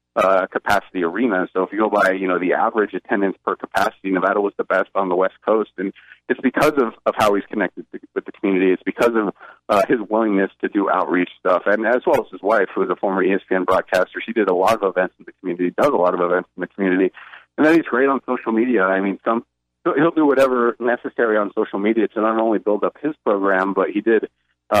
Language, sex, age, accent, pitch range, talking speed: English, male, 30-49, American, 95-110 Hz, 245 wpm